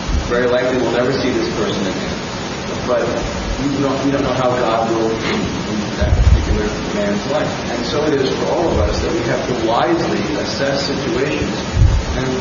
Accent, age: American, 40-59